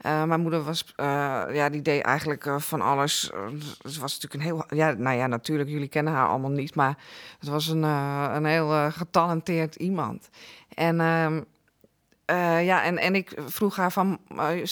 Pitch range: 155-185 Hz